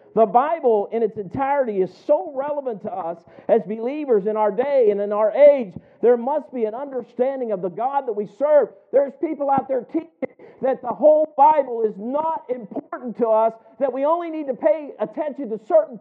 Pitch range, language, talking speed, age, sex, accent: 225-310 Hz, English, 200 wpm, 50-69, male, American